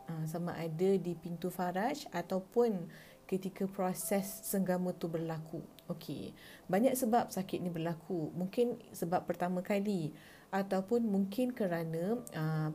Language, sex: English, female